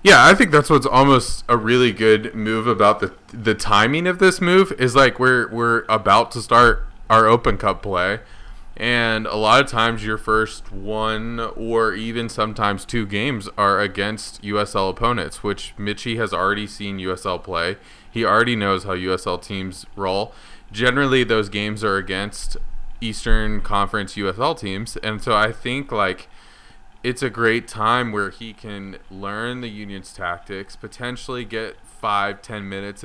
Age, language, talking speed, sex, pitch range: 20-39, English, 160 wpm, male, 95-115 Hz